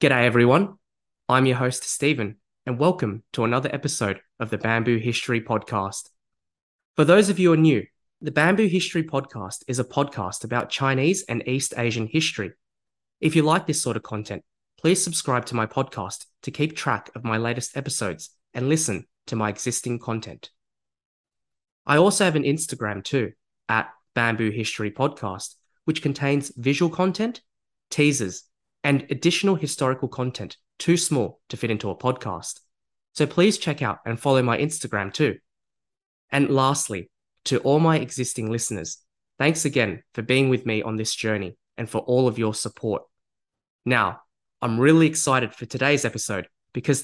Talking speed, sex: 160 wpm, male